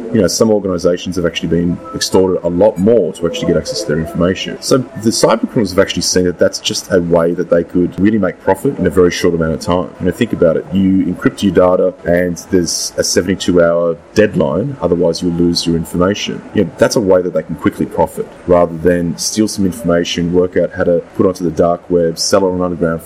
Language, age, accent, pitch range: English, 20-39, Australian, 85-95 Hz